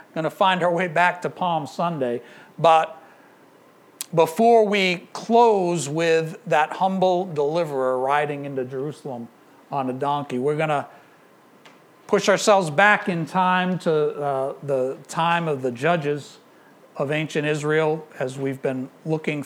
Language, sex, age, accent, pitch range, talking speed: English, male, 60-79, American, 140-180 Hz, 135 wpm